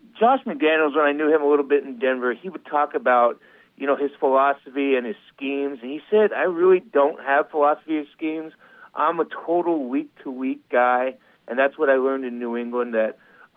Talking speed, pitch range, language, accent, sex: 205 wpm, 135-185 Hz, English, American, male